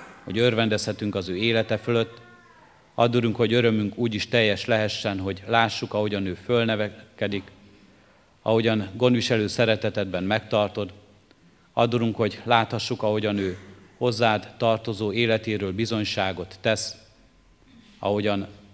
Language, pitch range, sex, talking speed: Hungarian, 100-110 Hz, male, 105 wpm